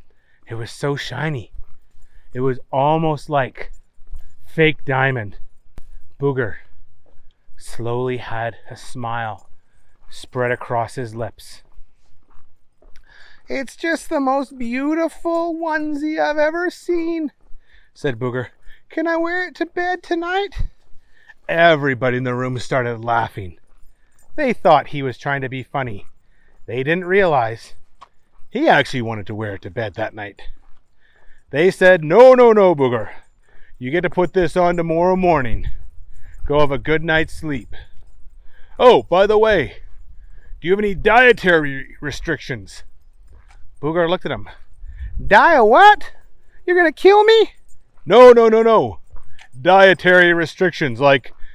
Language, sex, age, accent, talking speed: English, male, 30-49, American, 130 wpm